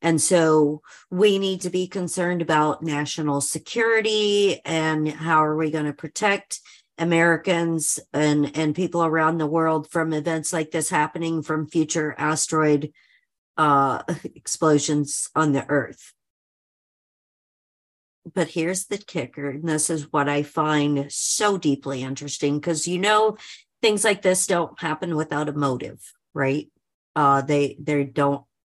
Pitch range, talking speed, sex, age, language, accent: 145-170 Hz, 140 wpm, female, 50-69, English, American